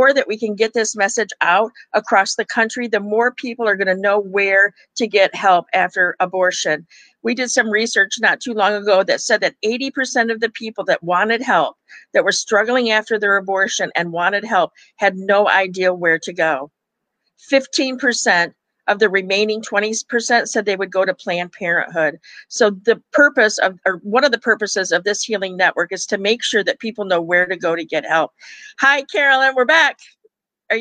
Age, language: 50-69, English